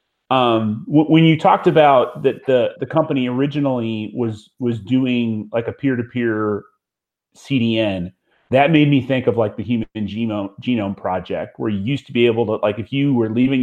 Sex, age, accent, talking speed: male, 30-49, American, 185 wpm